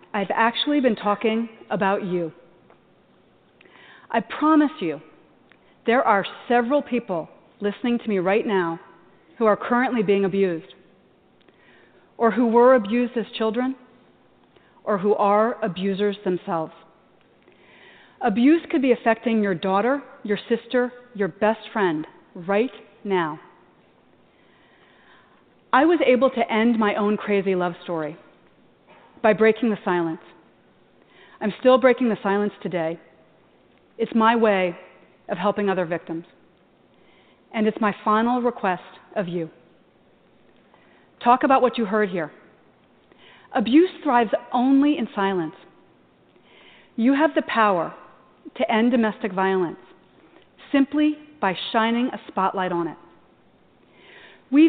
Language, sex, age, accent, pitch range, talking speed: English, female, 40-59, American, 190-245 Hz, 120 wpm